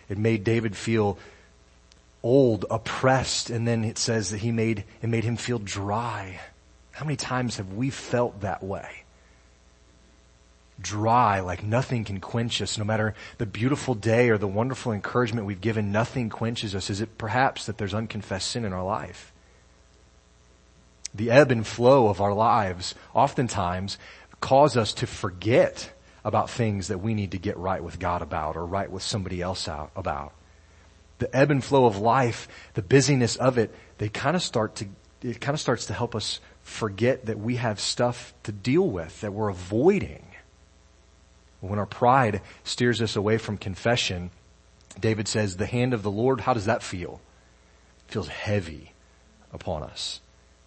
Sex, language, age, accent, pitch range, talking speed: male, English, 30-49, American, 90-115 Hz, 170 wpm